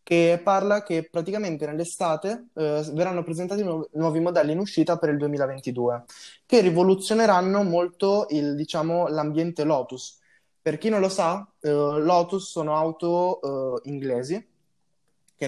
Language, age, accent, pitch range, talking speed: Italian, 20-39, native, 145-180 Hz, 130 wpm